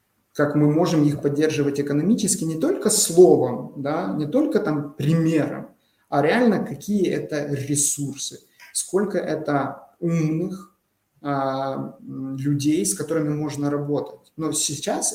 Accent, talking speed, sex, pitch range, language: native, 120 wpm, male, 145-180 Hz, Russian